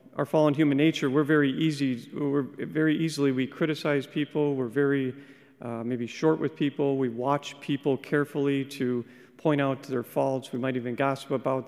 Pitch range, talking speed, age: 130-150 Hz, 175 wpm, 40-59